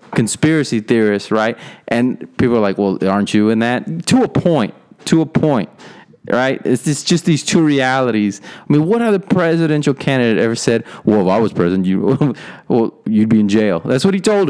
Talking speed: 195 wpm